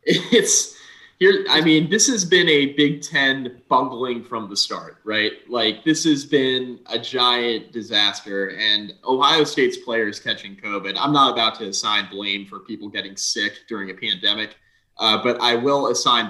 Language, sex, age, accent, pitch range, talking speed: English, male, 20-39, American, 105-145 Hz, 170 wpm